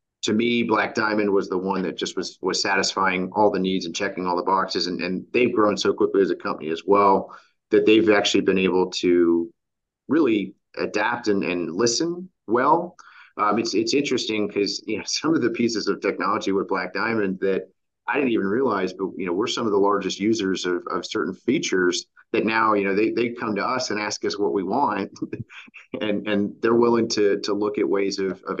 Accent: American